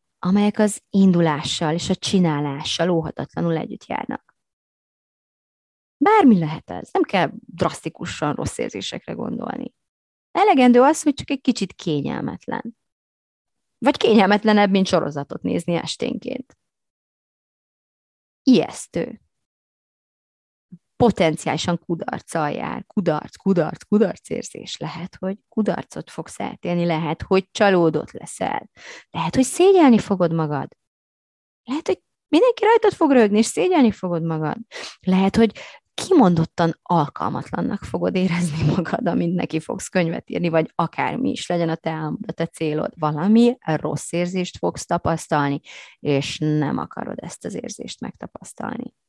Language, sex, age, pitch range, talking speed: Hungarian, female, 30-49, 160-230 Hz, 115 wpm